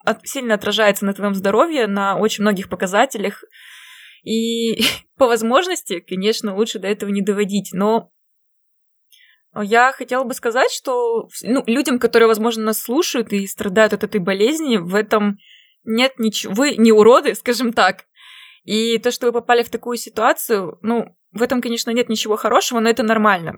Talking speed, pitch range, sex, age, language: 160 wpm, 210-245 Hz, female, 20-39, Russian